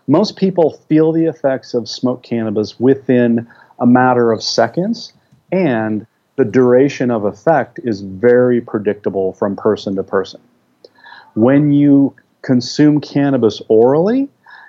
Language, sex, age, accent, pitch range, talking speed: English, male, 40-59, American, 110-145 Hz, 125 wpm